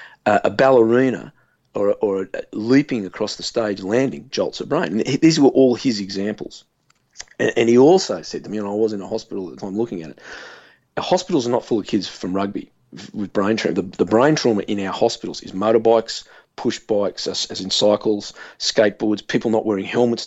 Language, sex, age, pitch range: English, male, 40-59, 95-120 Hz